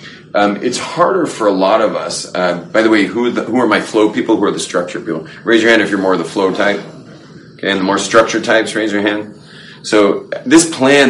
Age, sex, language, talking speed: 40-59, male, English, 250 wpm